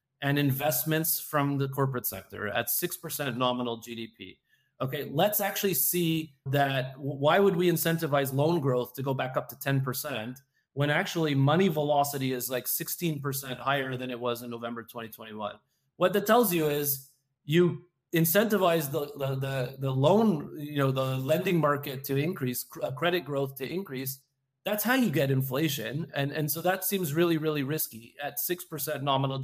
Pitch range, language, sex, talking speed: 130-170 Hz, English, male, 165 wpm